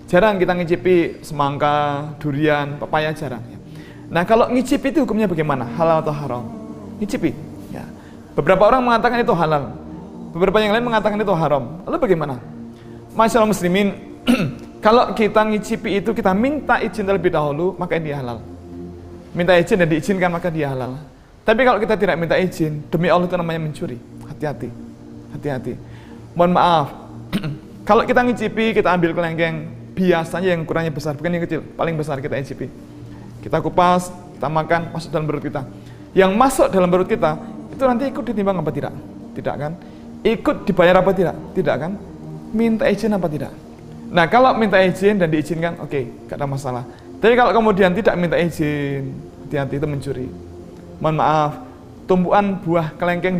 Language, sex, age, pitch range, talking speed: Indonesian, male, 20-39, 145-200 Hz, 160 wpm